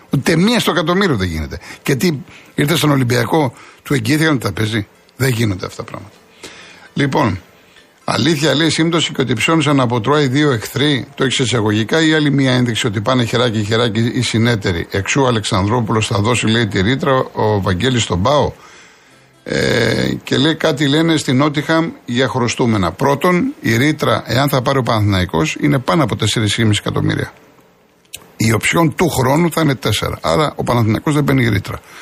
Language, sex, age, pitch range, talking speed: Greek, male, 60-79, 115-155 Hz, 165 wpm